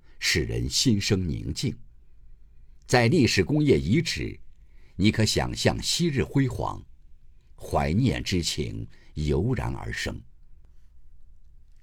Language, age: Chinese, 50-69